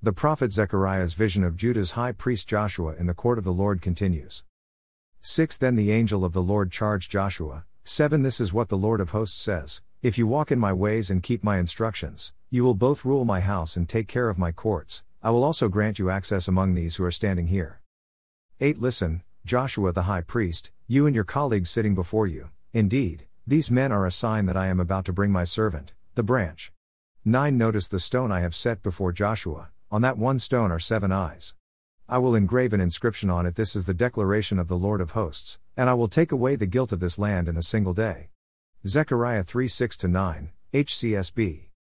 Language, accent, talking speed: English, American, 210 wpm